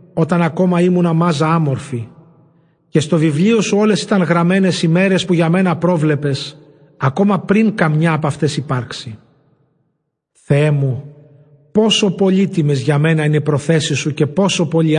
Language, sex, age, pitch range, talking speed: Greek, male, 50-69, 145-175 Hz, 150 wpm